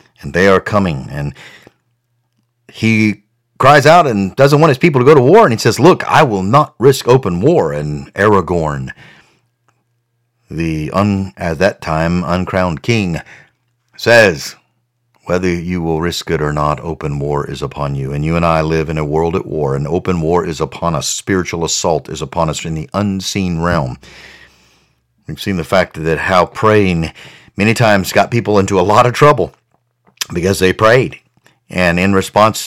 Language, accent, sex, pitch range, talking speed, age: English, American, male, 85-115 Hz, 175 wpm, 50-69